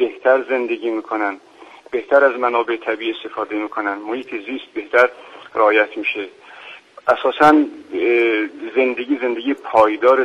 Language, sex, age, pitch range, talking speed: Persian, male, 50-69, 115-175 Hz, 105 wpm